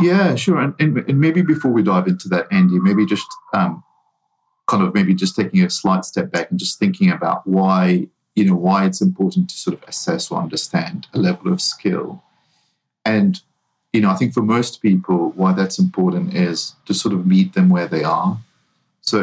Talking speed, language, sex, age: 205 wpm, English, male, 40-59